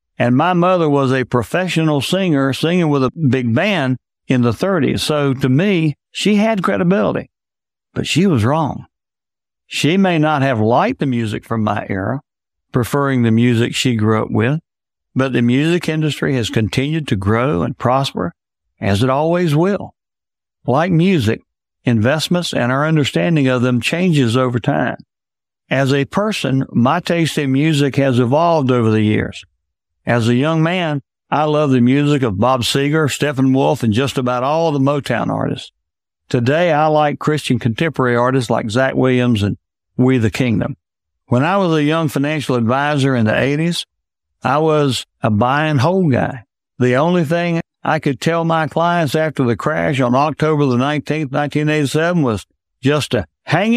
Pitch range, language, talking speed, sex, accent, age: 120-155 Hz, English, 165 wpm, male, American, 60-79